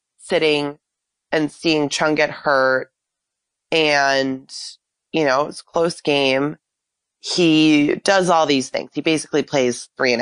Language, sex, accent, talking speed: English, female, American, 135 wpm